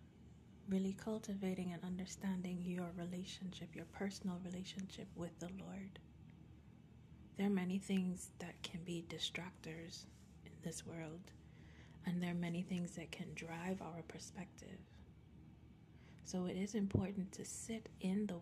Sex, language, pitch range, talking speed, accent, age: female, English, 170-190 Hz, 135 wpm, American, 30-49